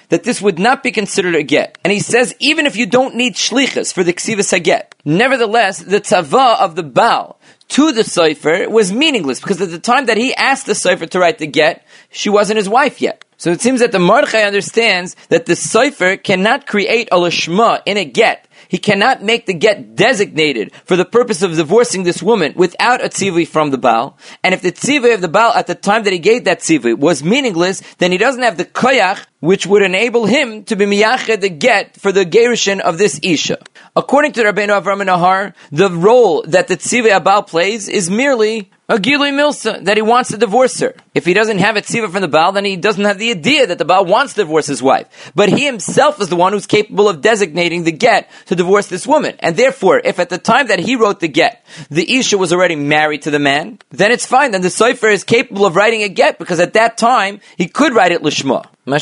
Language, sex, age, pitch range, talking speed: English, male, 30-49, 180-235 Hz, 230 wpm